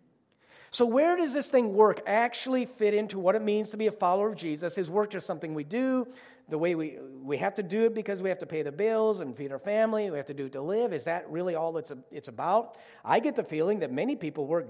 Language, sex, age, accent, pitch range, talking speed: English, male, 40-59, American, 155-220 Hz, 265 wpm